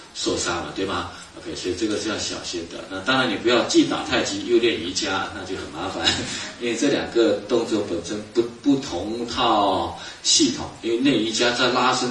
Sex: male